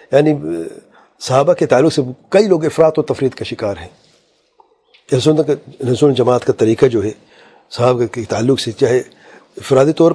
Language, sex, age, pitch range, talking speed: English, male, 40-59, 125-155 Hz, 155 wpm